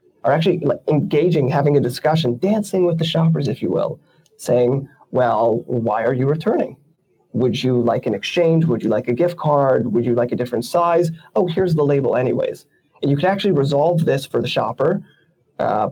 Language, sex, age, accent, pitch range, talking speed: English, male, 30-49, American, 135-165 Hz, 190 wpm